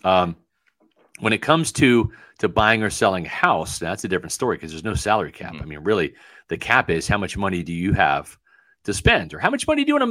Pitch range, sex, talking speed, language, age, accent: 110-160 Hz, male, 250 wpm, English, 40-59, American